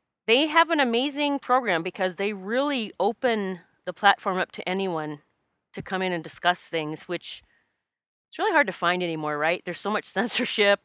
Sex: female